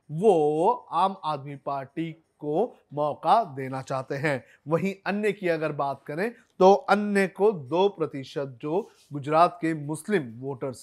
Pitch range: 155-215 Hz